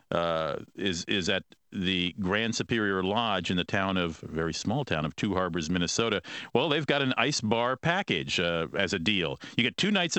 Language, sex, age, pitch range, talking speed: English, male, 50-69, 100-130 Hz, 200 wpm